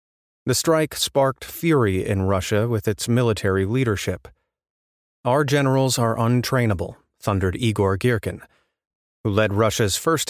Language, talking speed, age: English, 120 wpm, 30-49